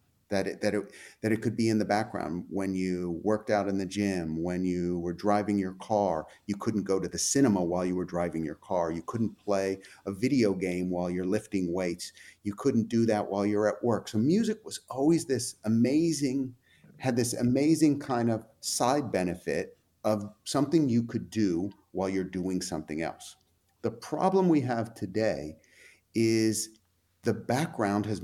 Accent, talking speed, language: American, 175 wpm, English